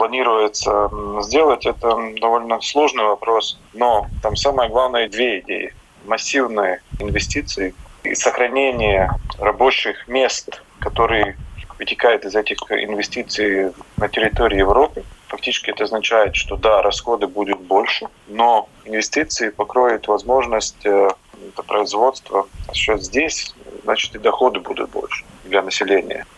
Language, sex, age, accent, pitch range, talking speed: Russian, male, 30-49, native, 100-120 Hz, 110 wpm